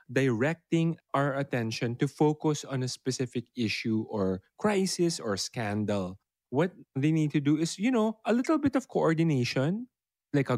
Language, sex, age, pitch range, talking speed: English, male, 20-39, 120-160 Hz, 160 wpm